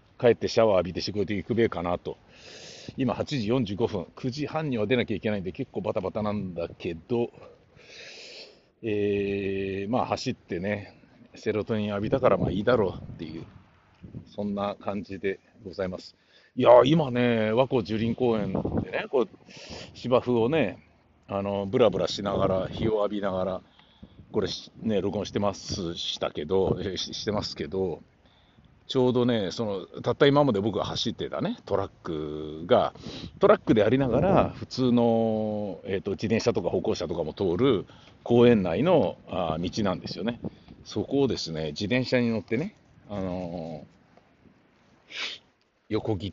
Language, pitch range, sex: Japanese, 95-120 Hz, male